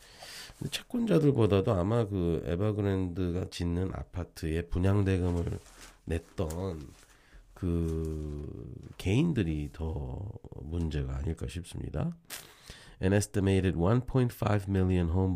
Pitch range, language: 75-100 Hz, Korean